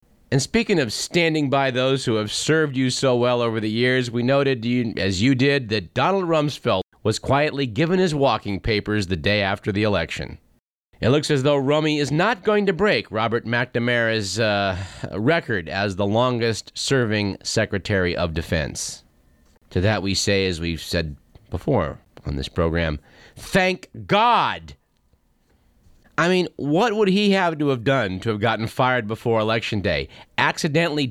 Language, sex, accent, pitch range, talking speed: English, male, American, 105-150 Hz, 160 wpm